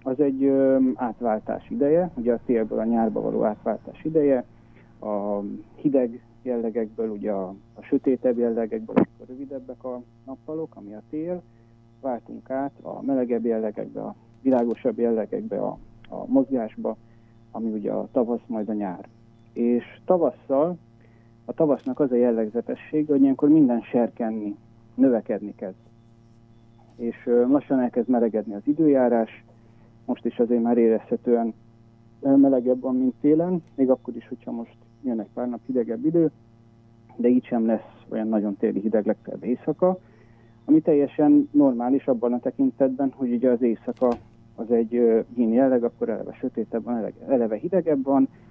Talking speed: 140 wpm